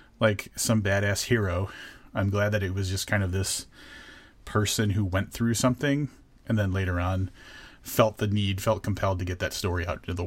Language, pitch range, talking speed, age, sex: English, 95-110 Hz, 200 wpm, 30-49, male